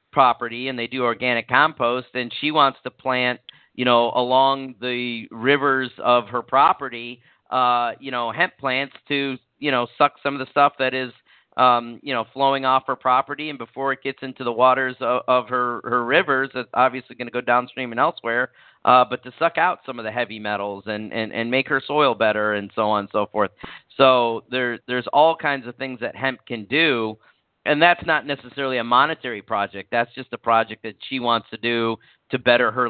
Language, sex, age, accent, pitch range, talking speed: English, male, 40-59, American, 115-130 Hz, 210 wpm